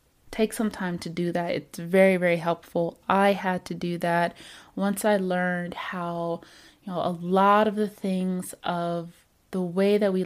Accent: American